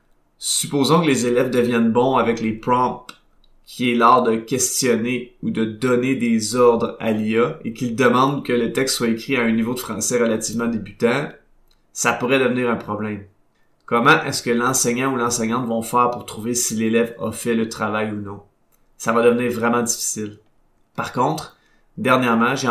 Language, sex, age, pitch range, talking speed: French, male, 30-49, 115-130 Hz, 180 wpm